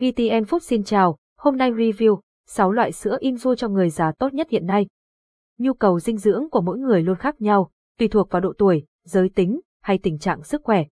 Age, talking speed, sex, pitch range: 20-39, 220 wpm, female, 180-235 Hz